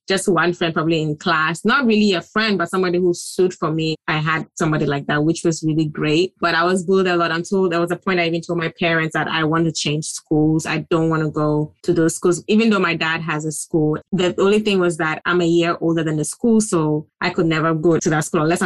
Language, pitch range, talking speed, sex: English, 155-175 Hz, 265 wpm, female